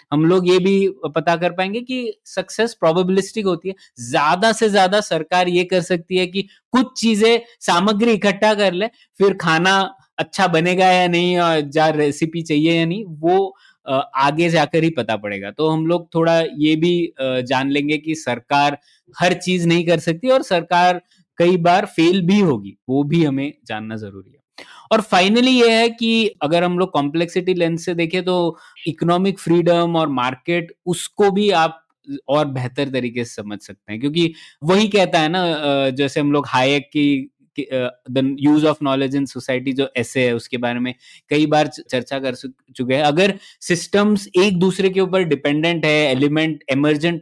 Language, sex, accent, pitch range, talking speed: Hindi, male, native, 145-190 Hz, 175 wpm